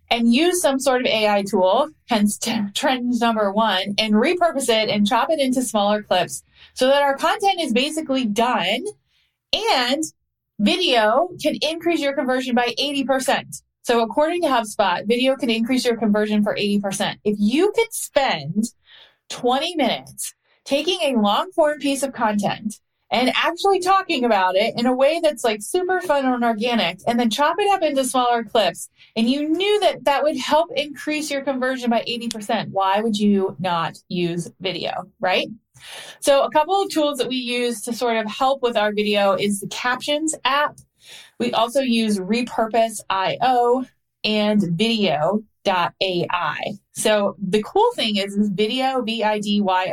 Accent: American